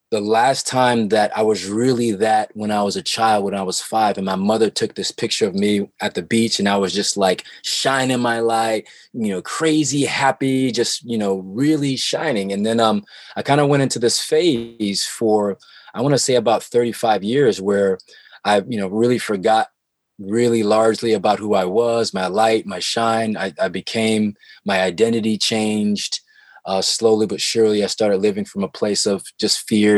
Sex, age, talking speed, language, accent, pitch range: male, 20-39, 195 wpm, English, American, 100-115 Hz